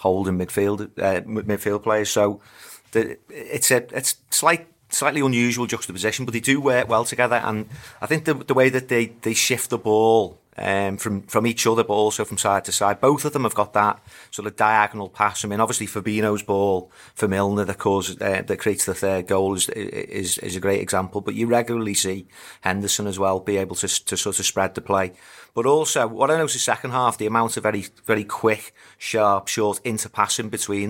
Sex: male